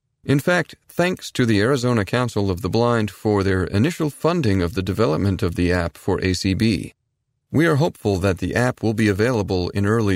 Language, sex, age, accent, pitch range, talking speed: English, male, 30-49, American, 95-125 Hz, 195 wpm